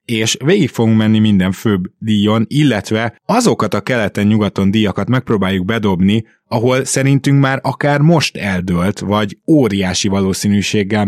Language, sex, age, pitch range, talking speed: Hungarian, male, 20-39, 95-115 Hz, 125 wpm